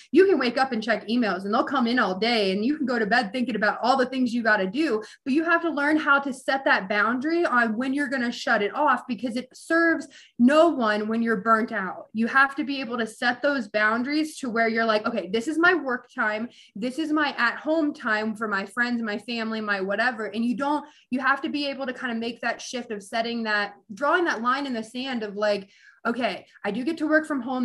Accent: American